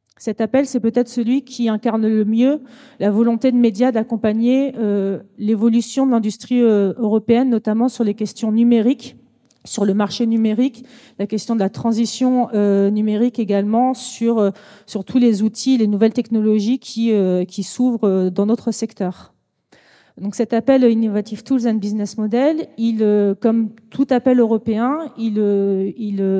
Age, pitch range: 30-49, 210-245 Hz